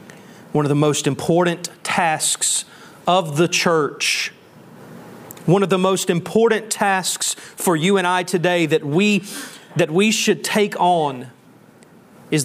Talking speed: 135 wpm